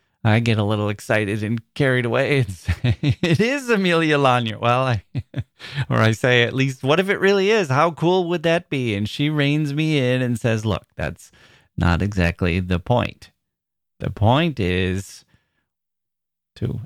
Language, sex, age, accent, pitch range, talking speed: English, male, 30-49, American, 105-140 Hz, 165 wpm